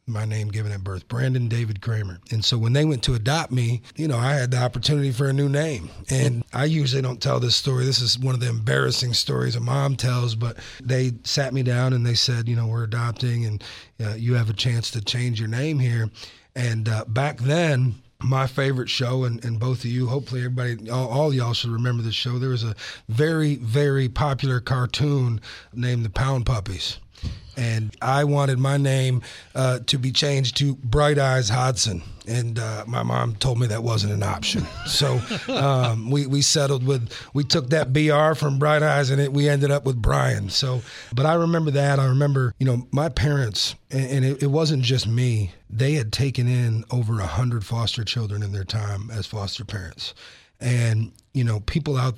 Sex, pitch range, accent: male, 115-135 Hz, American